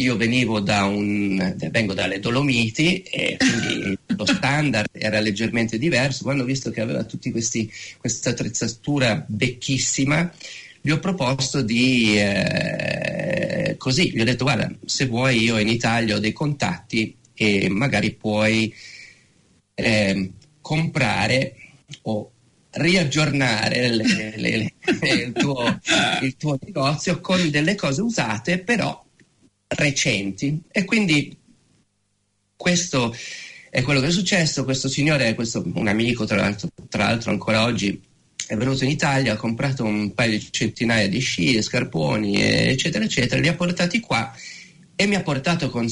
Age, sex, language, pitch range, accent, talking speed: 40-59, male, Italian, 110-150 Hz, native, 140 wpm